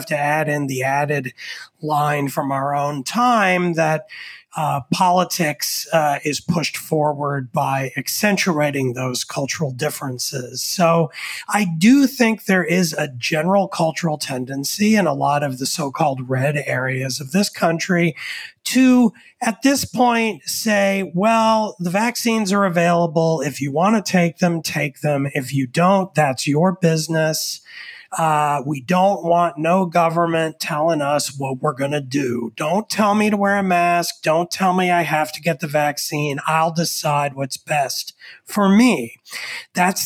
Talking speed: 155 wpm